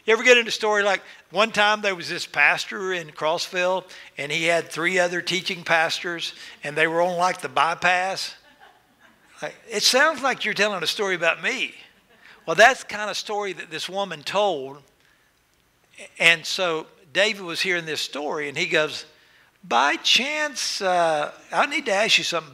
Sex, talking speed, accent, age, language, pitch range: male, 180 wpm, American, 60-79, English, 160-200 Hz